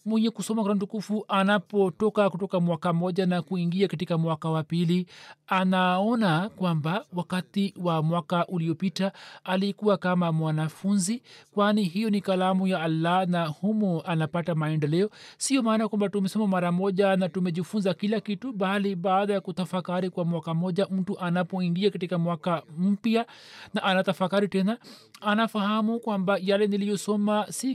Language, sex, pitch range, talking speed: Swahili, male, 170-210 Hz, 135 wpm